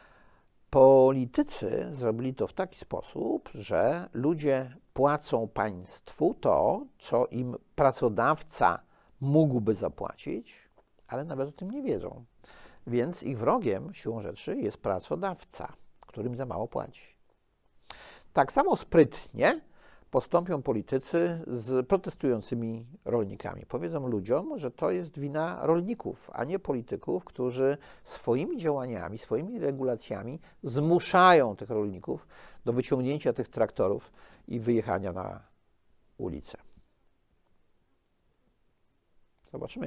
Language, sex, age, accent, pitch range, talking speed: Polish, male, 50-69, native, 120-155 Hz, 100 wpm